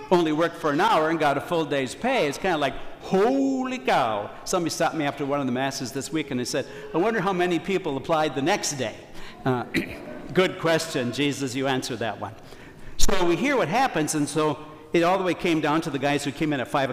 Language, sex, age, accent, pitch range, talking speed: English, male, 60-79, American, 140-185 Hz, 240 wpm